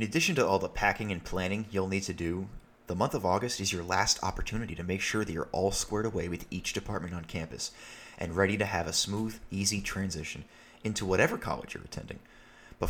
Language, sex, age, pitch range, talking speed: English, male, 30-49, 85-105 Hz, 220 wpm